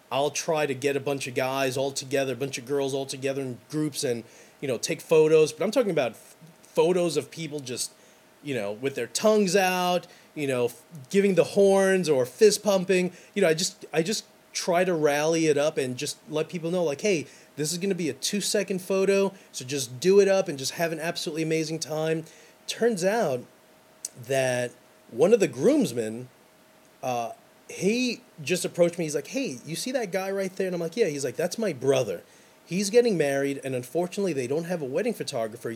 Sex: male